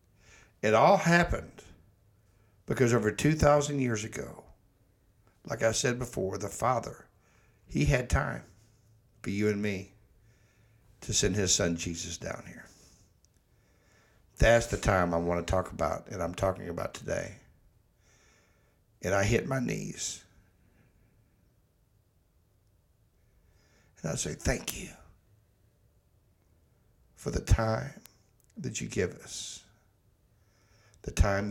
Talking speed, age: 115 wpm, 60-79